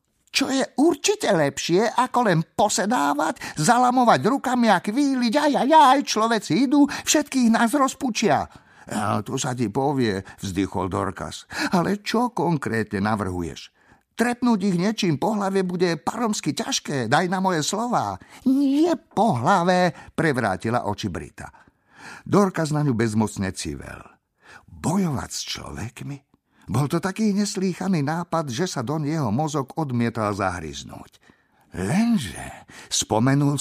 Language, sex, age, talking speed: Slovak, male, 50-69, 125 wpm